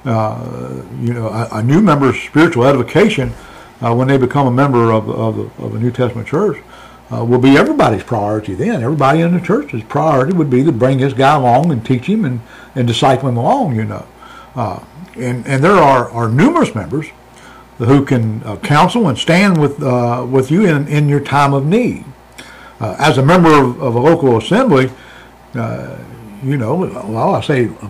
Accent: American